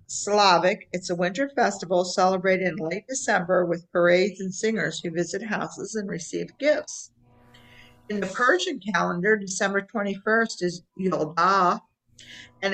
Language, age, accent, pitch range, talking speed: English, 50-69, American, 170-205 Hz, 130 wpm